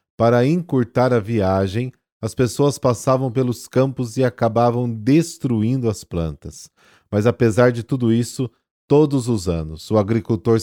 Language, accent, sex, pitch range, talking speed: Portuguese, Brazilian, male, 100-125 Hz, 135 wpm